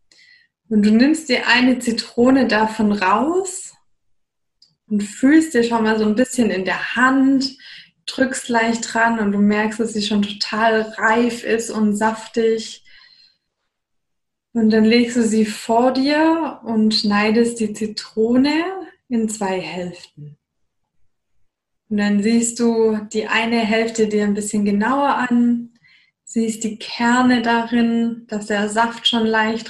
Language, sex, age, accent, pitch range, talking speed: German, female, 20-39, German, 210-240 Hz, 135 wpm